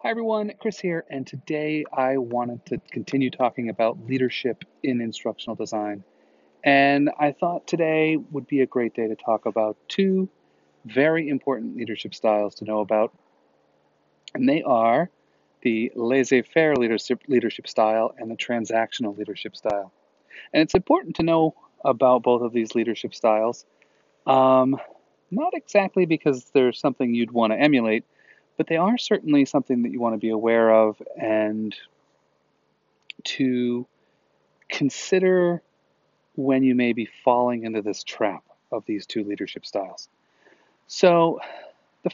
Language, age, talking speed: English, 40-59, 140 wpm